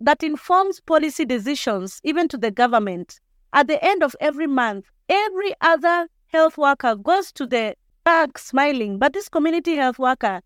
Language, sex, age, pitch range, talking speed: English, female, 40-59, 230-300 Hz, 160 wpm